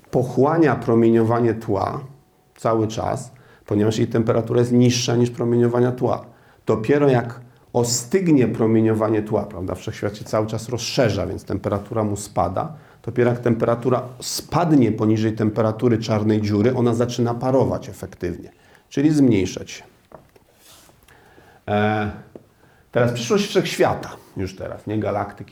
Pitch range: 105-135 Hz